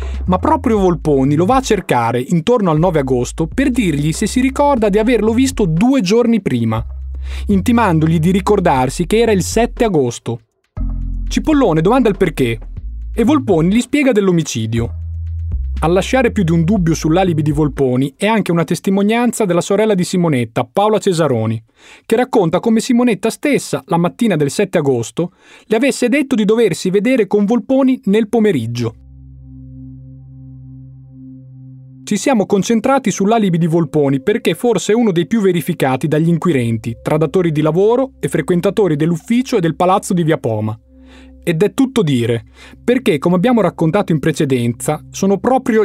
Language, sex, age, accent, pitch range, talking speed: Italian, male, 30-49, native, 130-215 Hz, 155 wpm